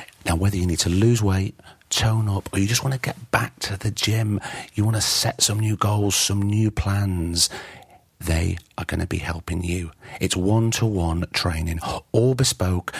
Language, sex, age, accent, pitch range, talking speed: English, male, 40-59, British, 90-120 Hz, 190 wpm